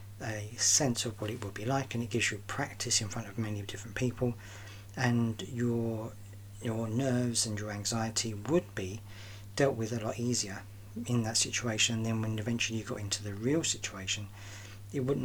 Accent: British